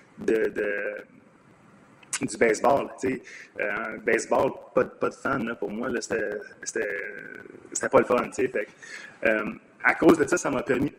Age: 30-49